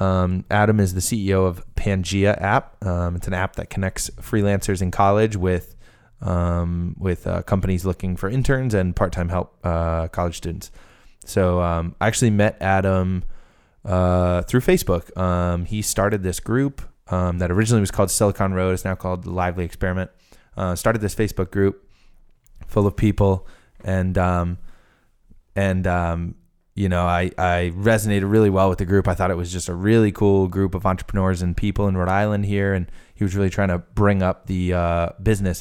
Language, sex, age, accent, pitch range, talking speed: English, male, 20-39, American, 90-100 Hz, 180 wpm